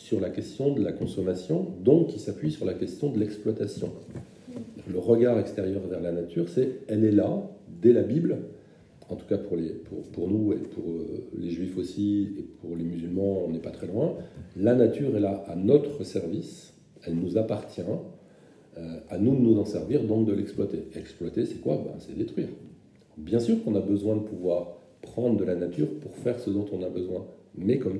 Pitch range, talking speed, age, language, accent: 90-115 Hz, 205 wpm, 40-59, French, French